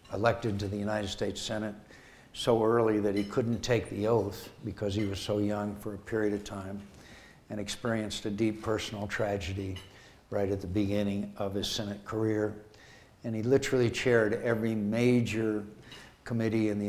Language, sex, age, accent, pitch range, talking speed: English, male, 60-79, American, 105-115 Hz, 165 wpm